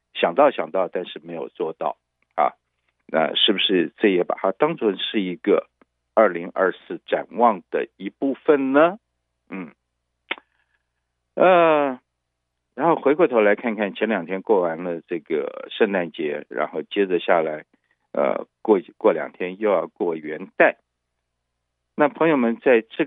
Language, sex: Chinese, male